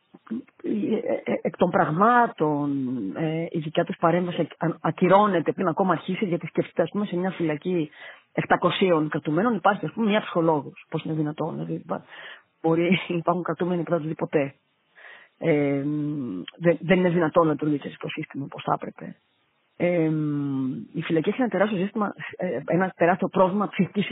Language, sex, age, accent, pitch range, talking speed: Greek, female, 30-49, Spanish, 160-190 Hz, 135 wpm